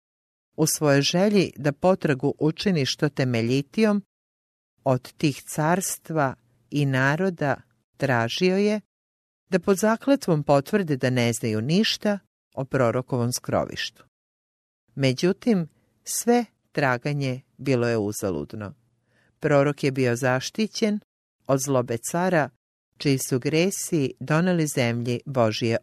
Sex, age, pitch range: female, 50-69, 120-160 Hz